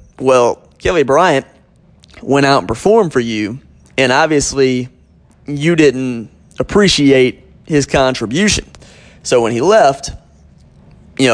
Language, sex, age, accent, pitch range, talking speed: English, male, 20-39, American, 125-165 Hz, 110 wpm